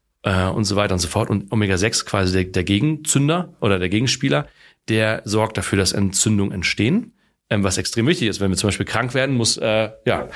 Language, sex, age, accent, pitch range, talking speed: German, male, 30-49, German, 100-115 Hz, 190 wpm